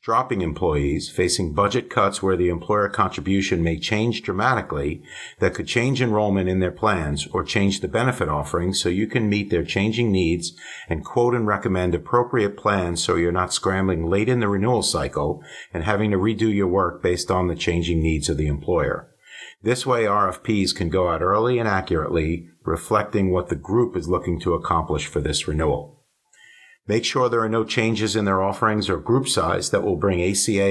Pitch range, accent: 85-110 Hz, American